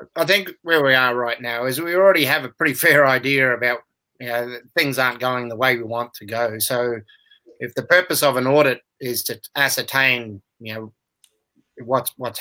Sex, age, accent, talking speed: male, 30-49, Australian, 205 wpm